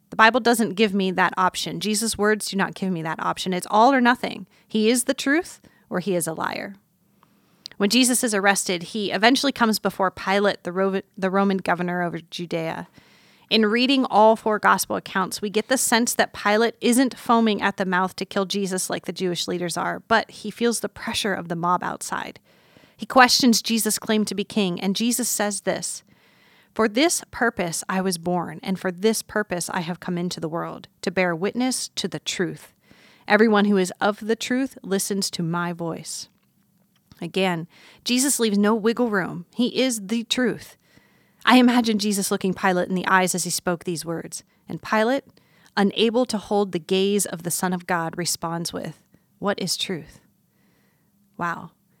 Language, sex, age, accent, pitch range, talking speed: English, female, 30-49, American, 180-225 Hz, 185 wpm